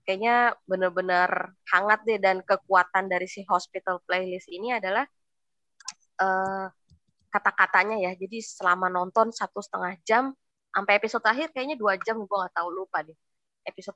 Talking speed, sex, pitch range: 140 wpm, female, 175-215 Hz